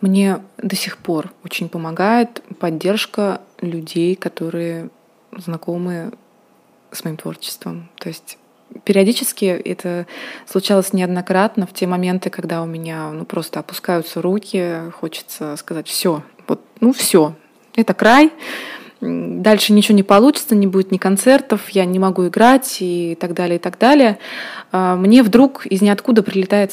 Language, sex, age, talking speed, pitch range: Russian, female, 20-39, 135 wpm, 180-230 Hz